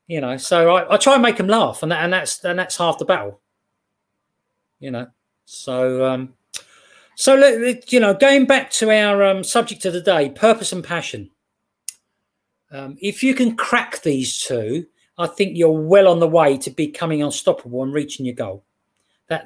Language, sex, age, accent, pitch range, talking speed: English, male, 40-59, British, 150-205 Hz, 185 wpm